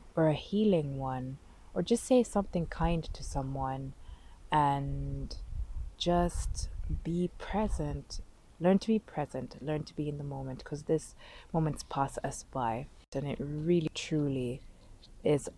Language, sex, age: English, female, 20-39